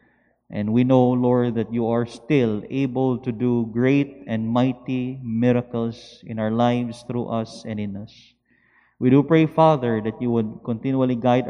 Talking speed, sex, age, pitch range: 165 wpm, male, 20-39, 115-130 Hz